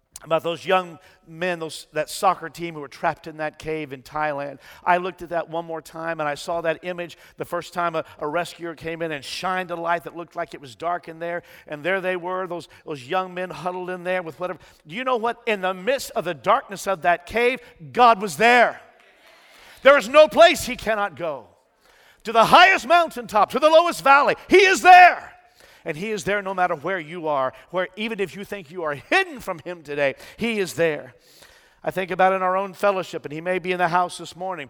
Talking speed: 230 wpm